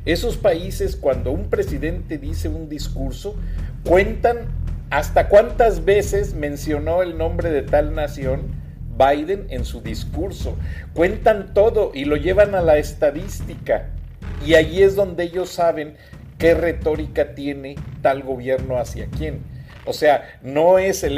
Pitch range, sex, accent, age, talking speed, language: 115-190 Hz, male, Mexican, 50-69, 135 wpm, Spanish